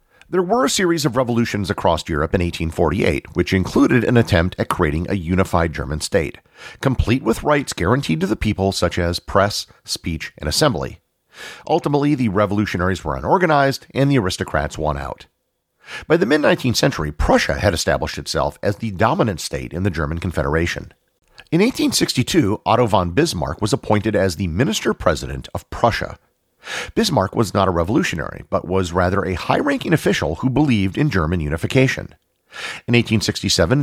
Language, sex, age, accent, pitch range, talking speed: English, male, 50-69, American, 85-120 Hz, 160 wpm